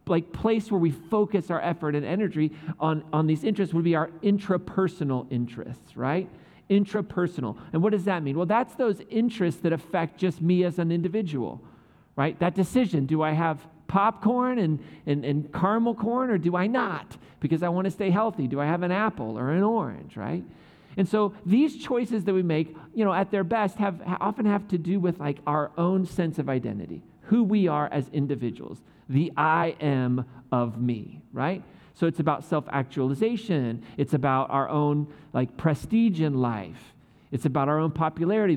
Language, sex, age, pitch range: English, male, 40-59, 140-195 Hz